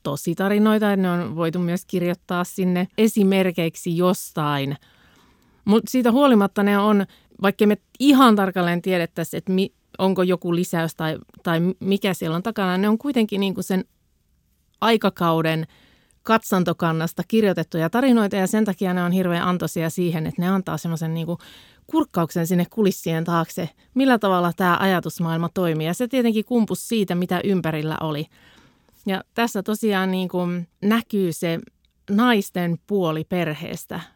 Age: 30-49